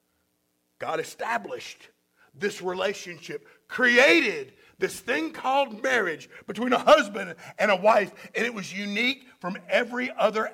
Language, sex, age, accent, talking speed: English, male, 50-69, American, 125 wpm